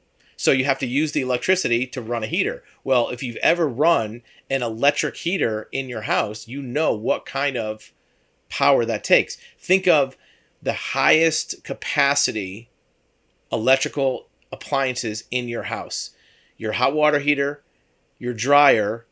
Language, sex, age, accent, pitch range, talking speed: English, male, 40-59, American, 120-145 Hz, 145 wpm